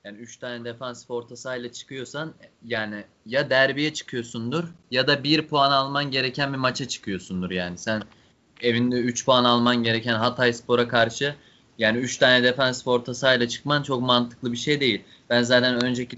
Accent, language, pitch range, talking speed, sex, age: native, Turkish, 120-150 Hz, 160 wpm, male, 20-39